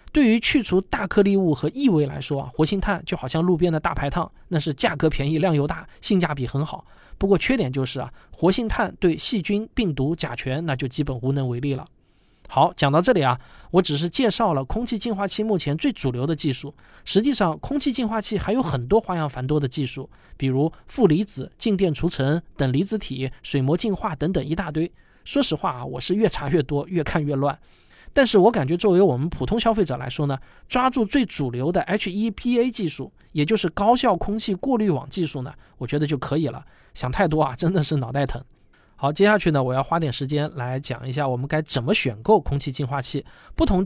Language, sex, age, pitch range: Chinese, male, 20-39, 140-200 Hz